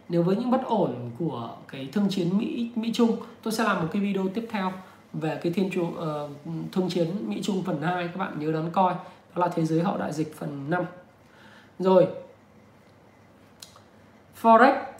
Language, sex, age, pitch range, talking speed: Vietnamese, male, 20-39, 150-190 Hz, 190 wpm